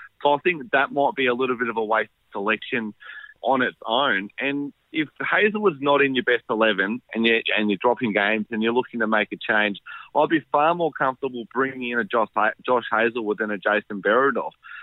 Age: 30-49